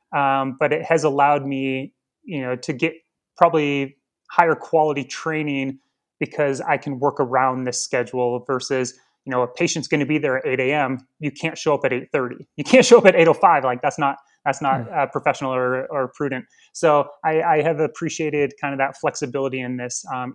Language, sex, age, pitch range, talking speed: English, male, 20-39, 135-160 Hz, 205 wpm